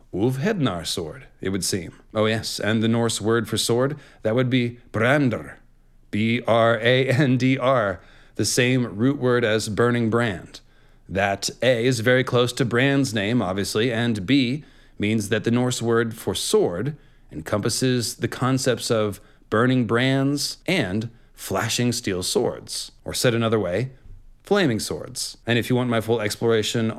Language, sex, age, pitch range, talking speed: English, male, 30-49, 110-130 Hz, 145 wpm